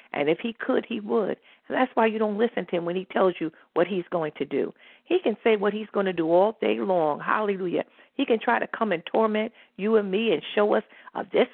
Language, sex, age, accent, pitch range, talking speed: English, female, 50-69, American, 165-210 Hz, 260 wpm